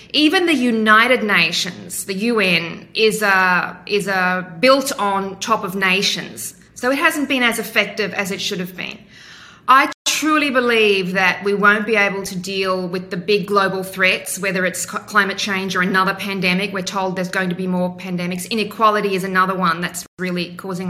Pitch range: 185-225 Hz